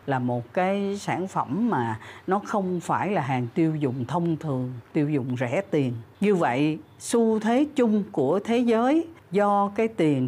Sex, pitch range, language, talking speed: female, 135-195 Hz, Vietnamese, 175 wpm